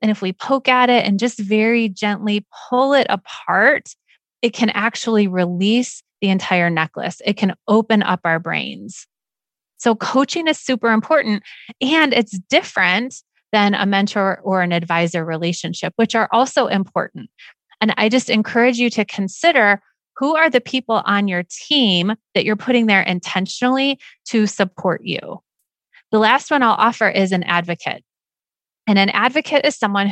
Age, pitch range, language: 30-49, 185-235 Hz, English